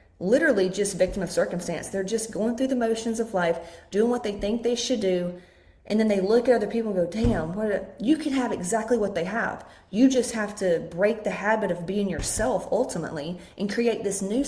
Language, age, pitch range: English, 30-49, 195-265 Hz